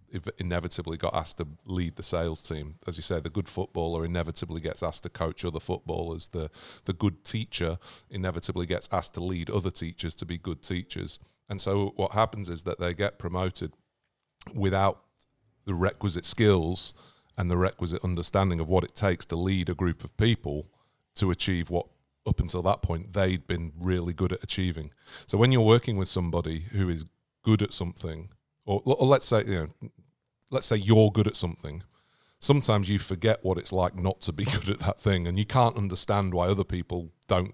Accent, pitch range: British, 85-100 Hz